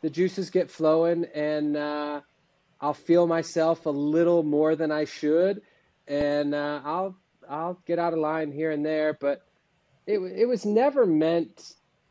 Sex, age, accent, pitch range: male, 30-49, American, 145-185 Hz